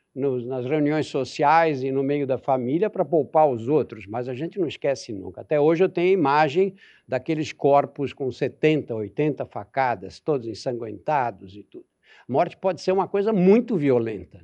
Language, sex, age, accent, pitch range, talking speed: Portuguese, male, 60-79, Brazilian, 145-210 Hz, 175 wpm